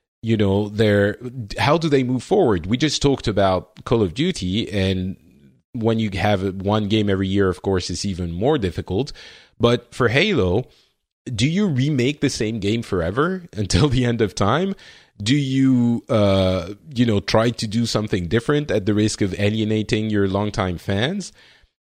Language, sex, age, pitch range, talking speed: English, male, 30-49, 95-125 Hz, 170 wpm